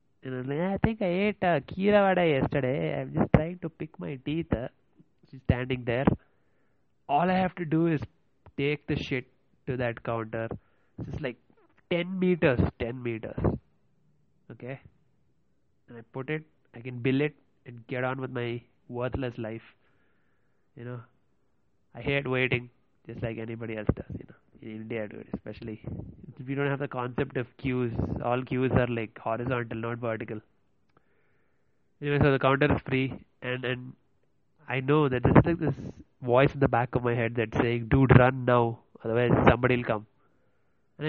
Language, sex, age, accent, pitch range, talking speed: English, male, 20-39, Indian, 120-145 Hz, 165 wpm